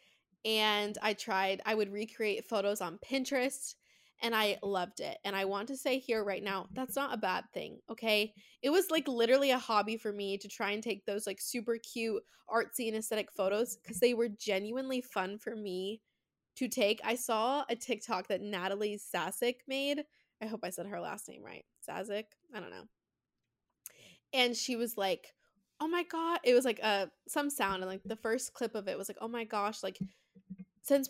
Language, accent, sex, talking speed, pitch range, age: English, American, female, 200 wpm, 200-250 Hz, 20-39